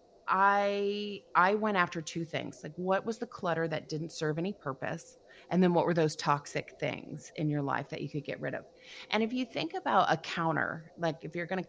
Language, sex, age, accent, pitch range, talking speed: English, female, 30-49, American, 160-225 Hz, 225 wpm